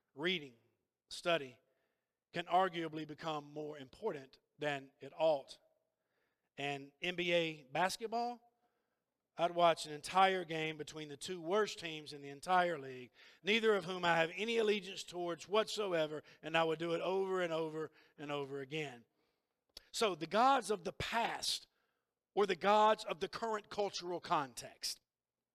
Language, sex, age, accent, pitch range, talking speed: English, male, 50-69, American, 160-225 Hz, 145 wpm